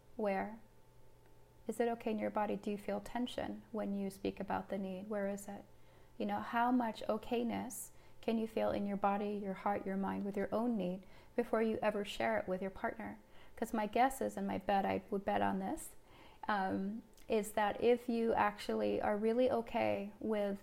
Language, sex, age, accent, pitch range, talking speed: English, female, 30-49, American, 195-225 Hz, 200 wpm